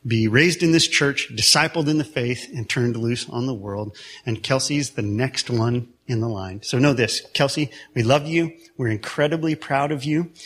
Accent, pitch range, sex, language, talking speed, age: American, 115-150 Hz, male, English, 200 wpm, 40-59